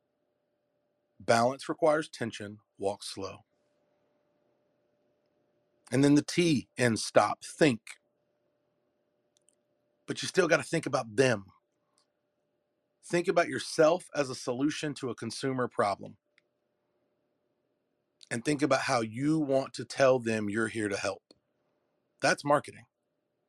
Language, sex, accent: English, male, American